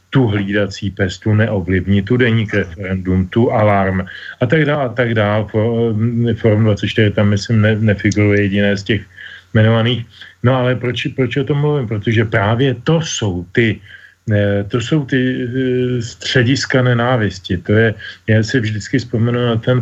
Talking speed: 150 wpm